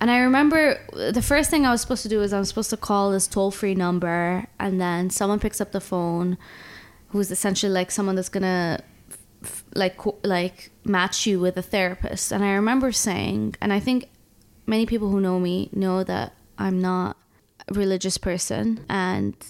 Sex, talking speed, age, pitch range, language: female, 190 wpm, 20-39, 175-200 Hz, English